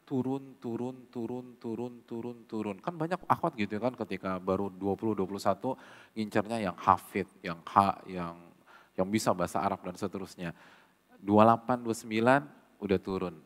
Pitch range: 90-110 Hz